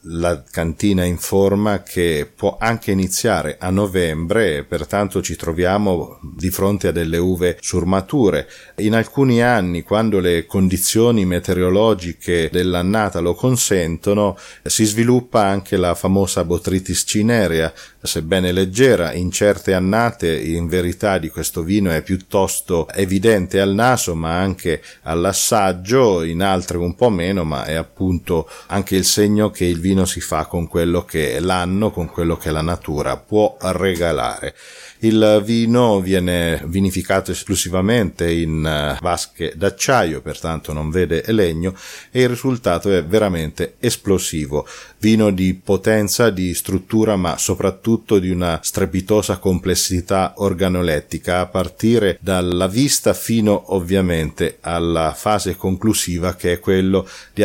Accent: native